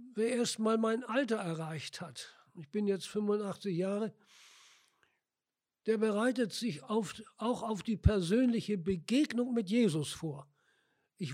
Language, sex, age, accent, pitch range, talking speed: German, male, 60-79, German, 190-235 Hz, 120 wpm